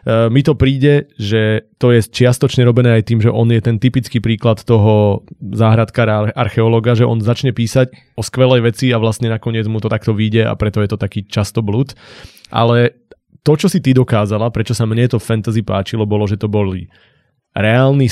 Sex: male